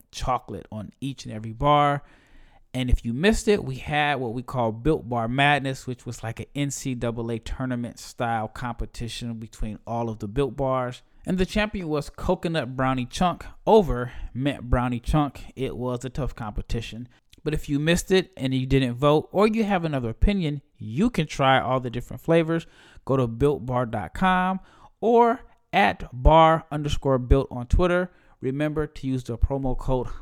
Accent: American